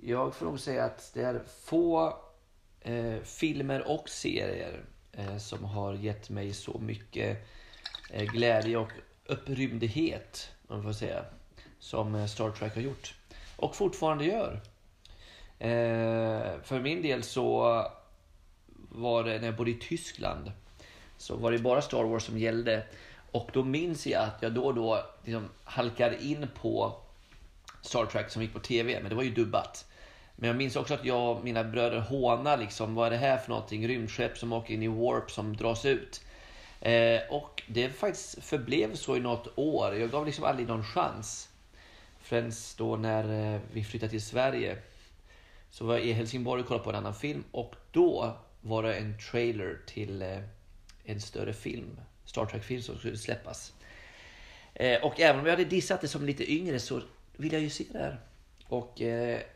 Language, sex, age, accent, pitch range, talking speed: Swedish, male, 30-49, native, 105-125 Hz, 175 wpm